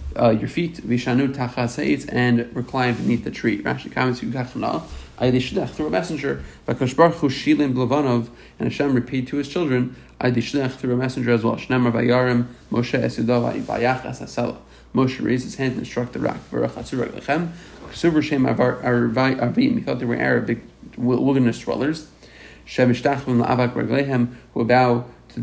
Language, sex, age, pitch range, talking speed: English, male, 30-49, 120-135 Hz, 100 wpm